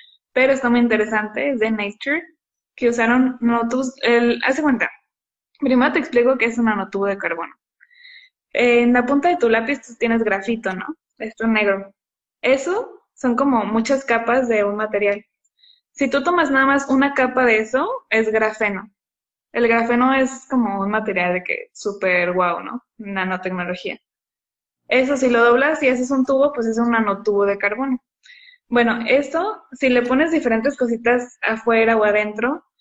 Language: Spanish